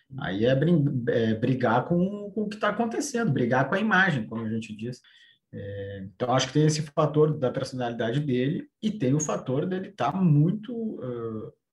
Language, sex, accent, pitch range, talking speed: Portuguese, male, Brazilian, 115-170 Hz, 165 wpm